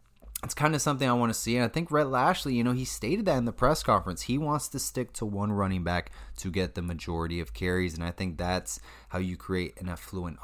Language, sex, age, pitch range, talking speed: English, male, 20-39, 90-115 Hz, 260 wpm